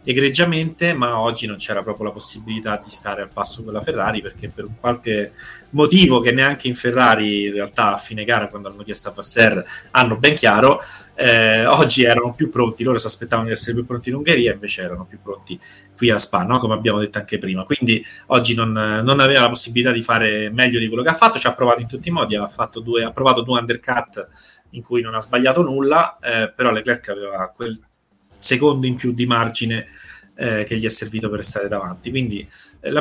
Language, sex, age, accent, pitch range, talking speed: Italian, male, 30-49, native, 110-135 Hz, 220 wpm